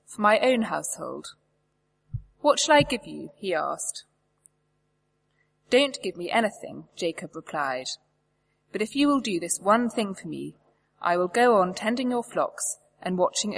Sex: female